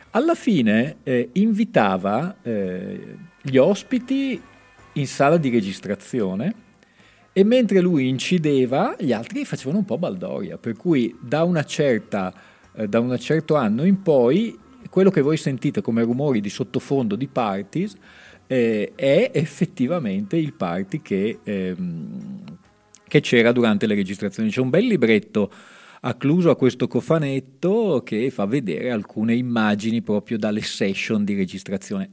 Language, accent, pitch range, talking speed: Italian, native, 110-185 Hz, 125 wpm